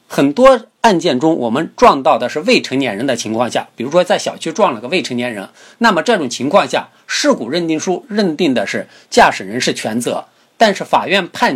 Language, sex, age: Chinese, male, 50-69